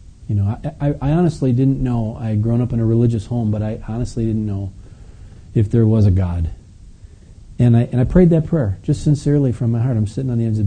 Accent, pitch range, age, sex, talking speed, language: American, 105-135 Hz, 40-59, male, 255 wpm, English